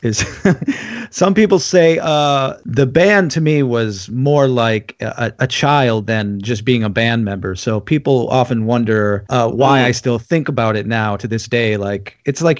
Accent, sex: American, male